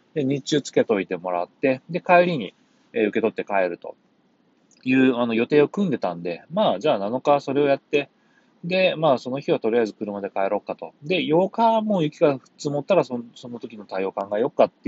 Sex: male